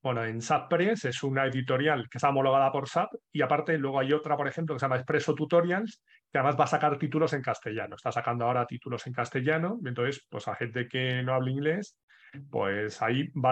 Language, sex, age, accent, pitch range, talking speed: Spanish, male, 30-49, Spanish, 130-160 Hz, 220 wpm